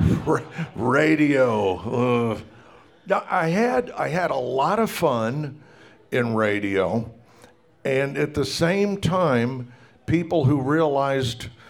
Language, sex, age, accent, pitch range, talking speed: English, male, 60-79, American, 115-155 Hz, 110 wpm